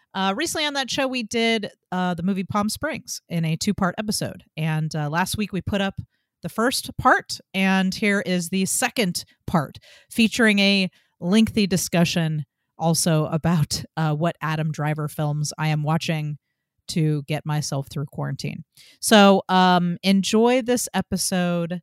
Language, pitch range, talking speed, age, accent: English, 155-200 Hz, 155 wpm, 40-59, American